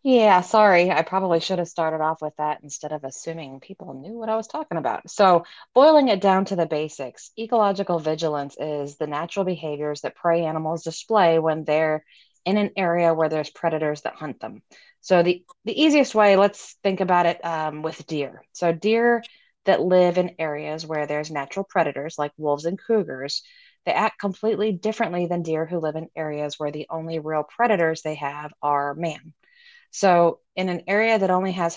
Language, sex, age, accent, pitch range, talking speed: English, female, 20-39, American, 155-200 Hz, 190 wpm